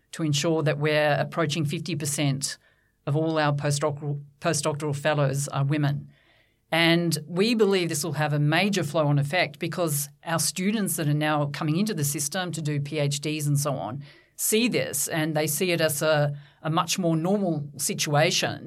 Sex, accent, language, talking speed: female, Australian, English, 175 wpm